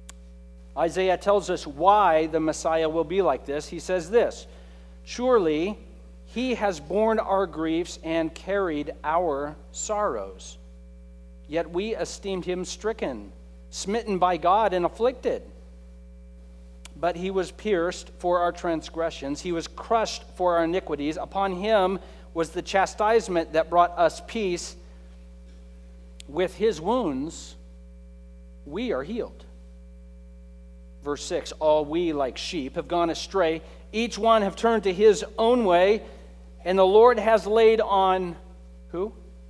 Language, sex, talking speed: English, male, 130 wpm